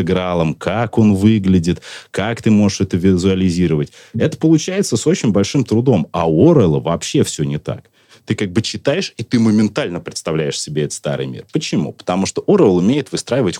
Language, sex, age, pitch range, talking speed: Russian, male, 30-49, 85-110 Hz, 170 wpm